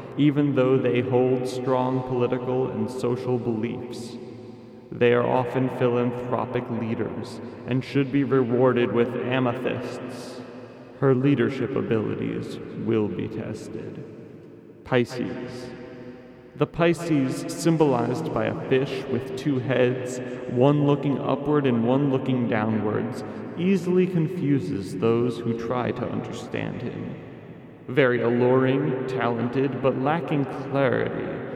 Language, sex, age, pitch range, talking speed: English, male, 30-49, 120-135 Hz, 110 wpm